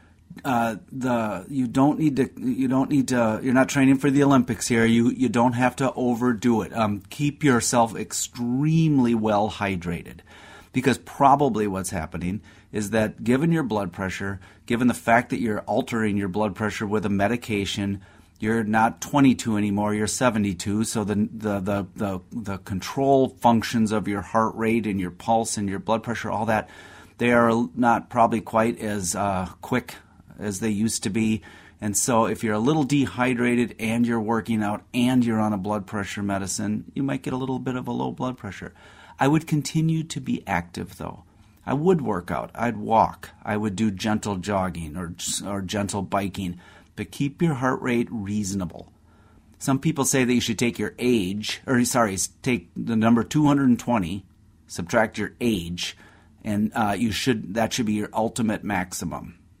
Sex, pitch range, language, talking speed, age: male, 100-125 Hz, English, 180 wpm, 30-49